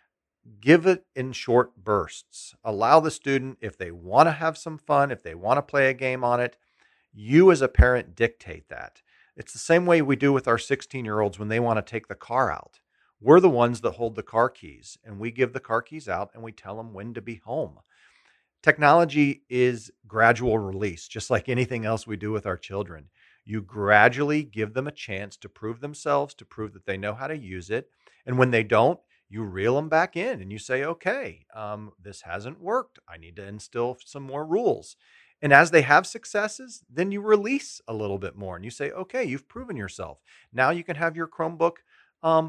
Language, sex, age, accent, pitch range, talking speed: English, male, 40-59, American, 105-155 Hz, 215 wpm